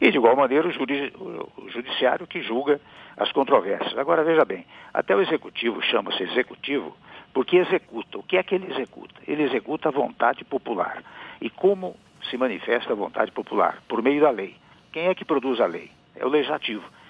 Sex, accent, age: male, Brazilian, 60-79